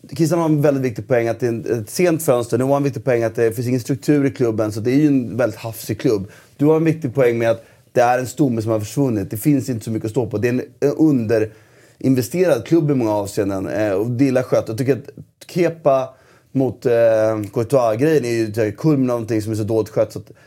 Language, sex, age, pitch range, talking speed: Swedish, male, 30-49, 115-140 Hz, 250 wpm